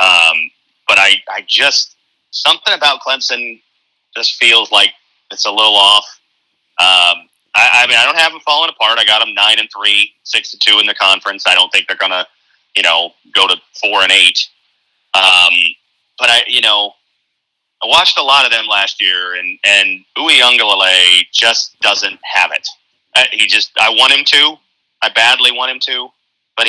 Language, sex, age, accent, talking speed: English, male, 30-49, American, 185 wpm